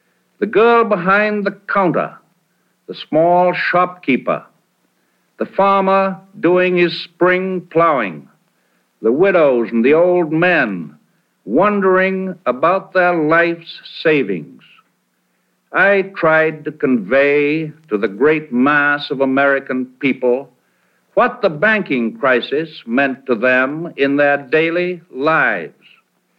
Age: 60-79